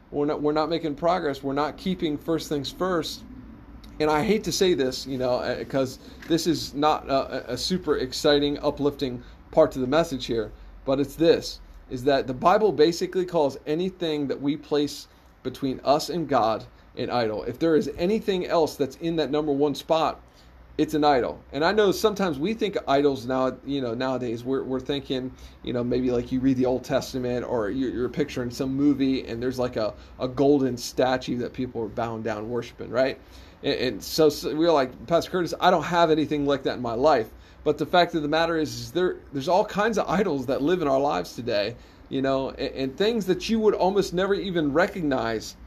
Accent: American